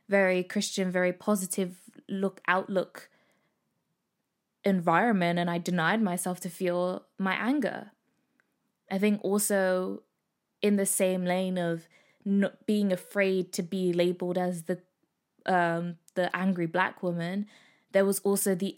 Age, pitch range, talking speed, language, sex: 10-29, 180-210 Hz, 130 wpm, English, female